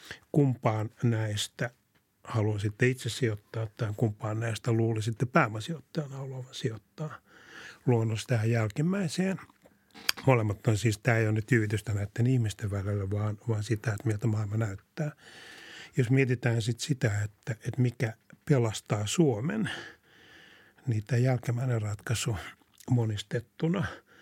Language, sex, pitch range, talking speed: Finnish, male, 105-125 Hz, 115 wpm